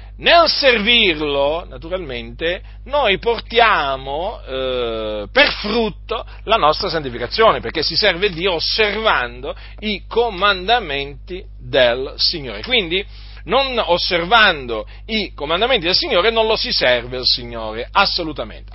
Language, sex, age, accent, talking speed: Italian, male, 40-59, native, 110 wpm